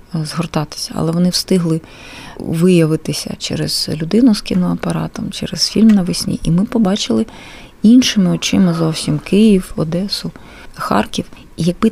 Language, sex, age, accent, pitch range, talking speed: Ukrainian, female, 20-39, native, 170-200 Hz, 110 wpm